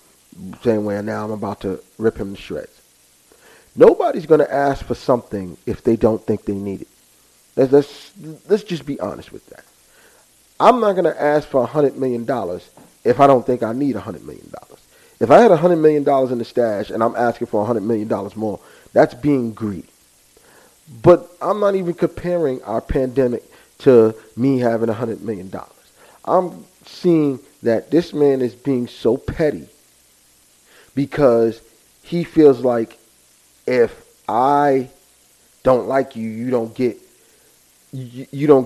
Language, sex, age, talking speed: English, male, 40-59, 170 wpm